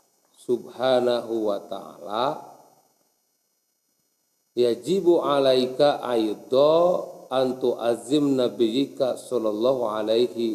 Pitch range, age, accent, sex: 120-185 Hz, 50-69, native, male